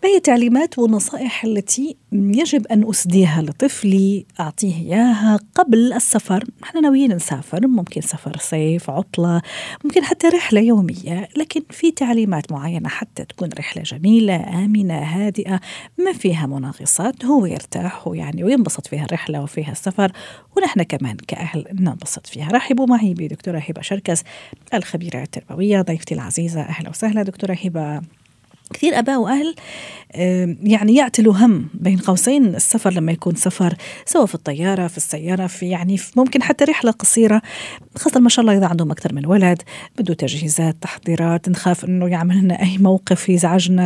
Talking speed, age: 145 wpm, 40-59